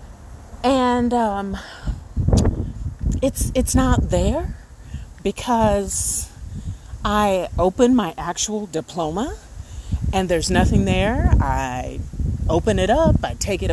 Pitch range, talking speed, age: 175-290 Hz, 100 wpm, 40-59